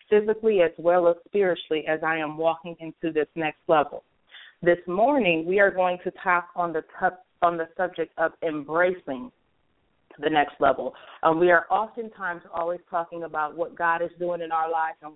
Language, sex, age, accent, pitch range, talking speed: English, female, 30-49, American, 165-195 Hz, 180 wpm